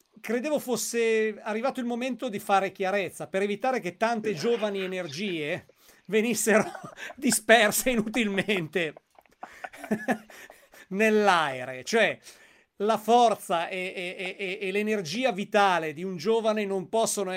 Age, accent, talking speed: 40-59, native, 110 wpm